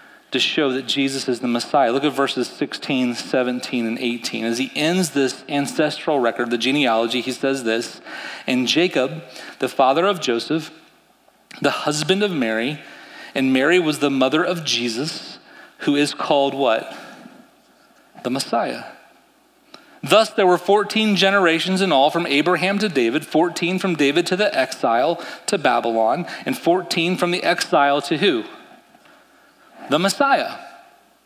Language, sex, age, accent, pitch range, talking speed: English, male, 30-49, American, 135-210 Hz, 145 wpm